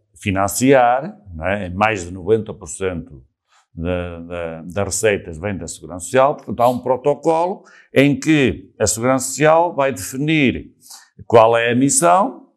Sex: male